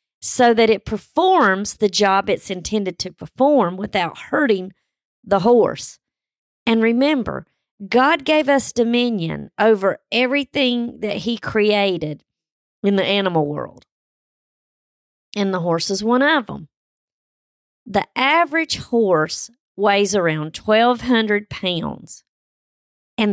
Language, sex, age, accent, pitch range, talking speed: English, female, 40-59, American, 190-245 Hz, 115 wpm